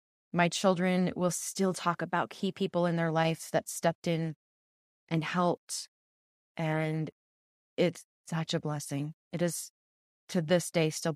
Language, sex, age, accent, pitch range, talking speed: English, female, 20-39, American, 165-220 Hz, 145 wpm